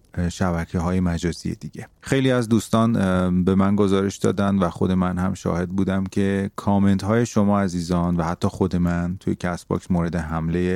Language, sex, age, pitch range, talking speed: Persian, male, 30-49, 95-115 Hz, 165 wpm